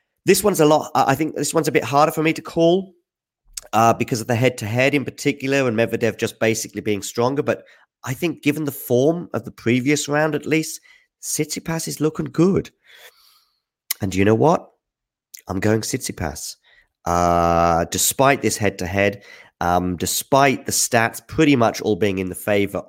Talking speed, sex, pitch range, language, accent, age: 175 wpm, male, 100-145 Hz, English, British, 30-49